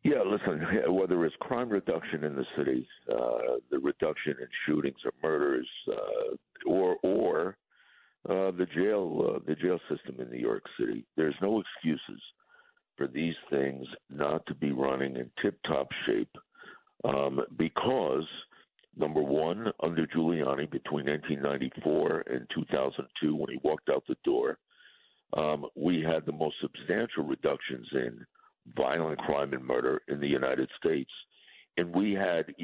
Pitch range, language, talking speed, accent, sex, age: 75-100 Hz, English, 155 wpm, American, male, 60-79